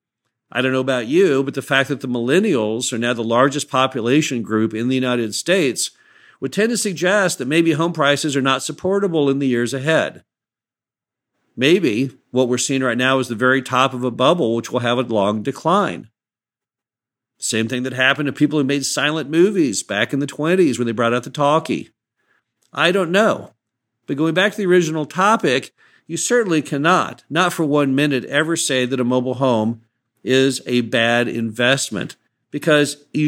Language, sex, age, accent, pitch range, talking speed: English, male, 50-69, American, 120-145 Hz, 190 wpm